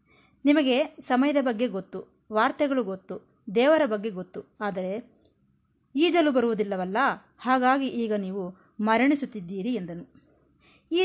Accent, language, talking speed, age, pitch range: native, Kannada, 100 wpm, 20-39, 190-255 Hz